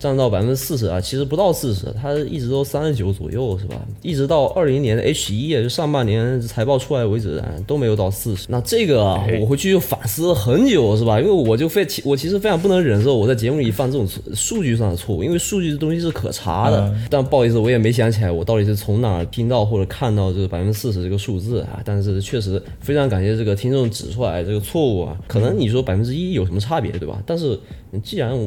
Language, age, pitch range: Chinese, 20-39, 100-135 Hz